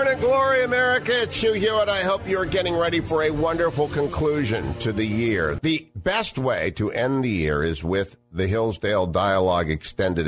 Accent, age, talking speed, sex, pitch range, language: American, 50-69, 180 wpm, male, 100-140 Hz, English